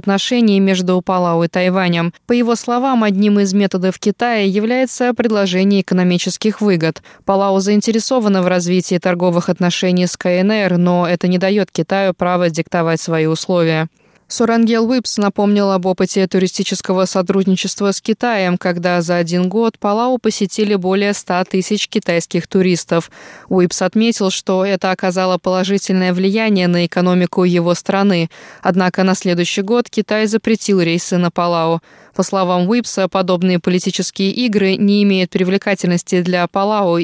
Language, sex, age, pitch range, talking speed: Russian, female, 20-39, 175-205 Hz, 135 wpm